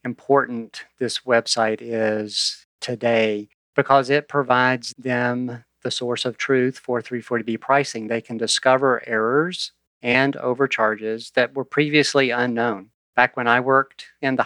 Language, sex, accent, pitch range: English, male, American, 115-130 Hz